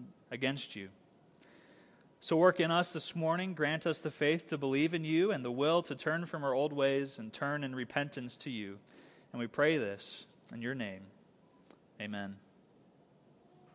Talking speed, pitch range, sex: 170 wpm, 125-165 Hz, male